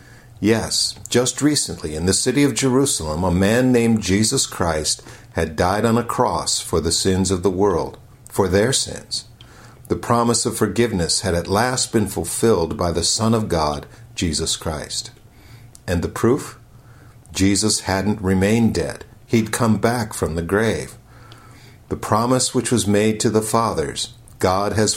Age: 50-69